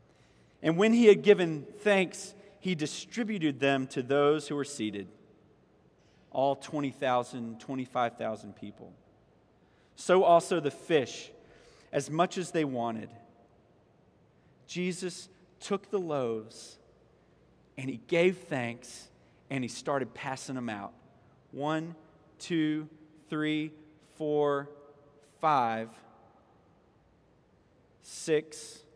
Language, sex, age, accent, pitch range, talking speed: English, male, 40-59, American, 140-175 Hz, 95 wpm